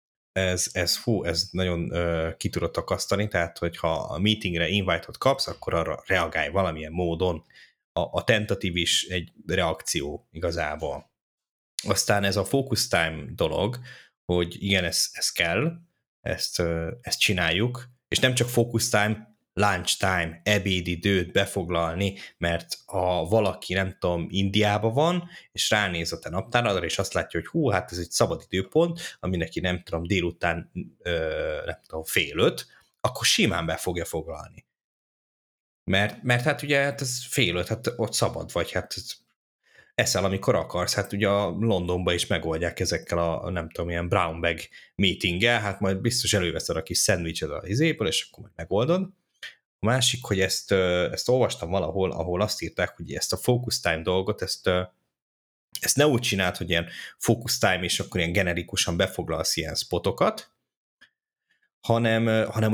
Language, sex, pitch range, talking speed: Hungarian, male, 85-110 Hz, 155 wpm